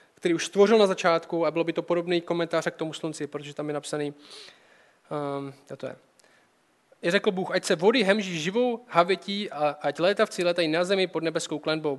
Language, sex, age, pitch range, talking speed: Czech, male, 20-39, 150-185 Hz, 195 wpm